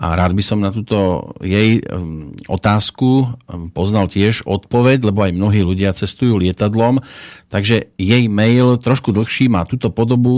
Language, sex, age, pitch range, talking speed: Slovak, male, 40-59, 100-120 Hz, 145 wpm